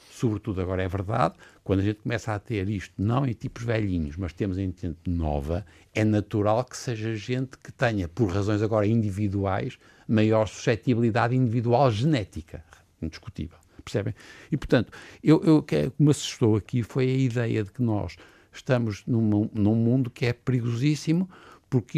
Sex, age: male, 60-79